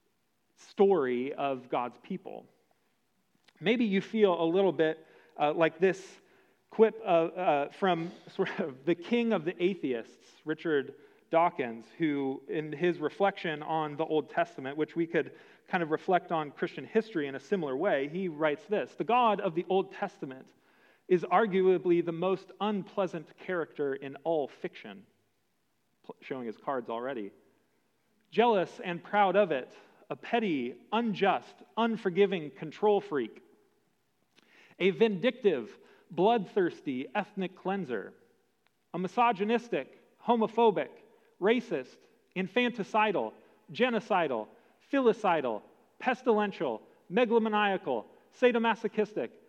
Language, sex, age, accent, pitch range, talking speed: English, male, 40-59, American, 165-220 Hz, 115 wpm